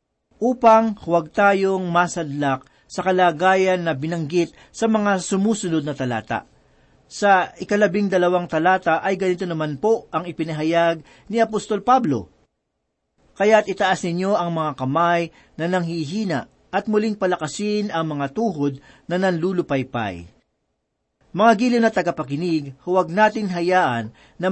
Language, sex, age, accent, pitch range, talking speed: Filipino, male, 40-59, native, 150-200 Hz, 120 wpm